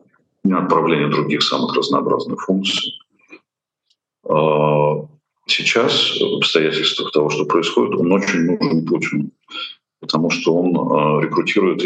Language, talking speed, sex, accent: Russian, 100 wpm, male, native